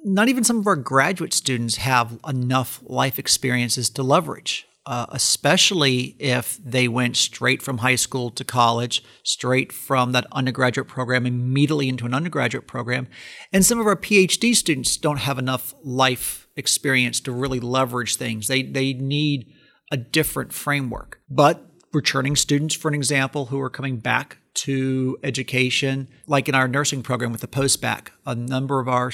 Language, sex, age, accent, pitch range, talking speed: English, male, 40-59, American, 125-140 Hz, 165 wpm